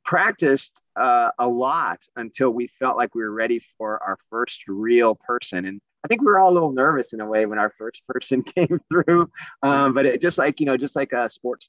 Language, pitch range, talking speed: English, 110-140 Hz, 230 wpm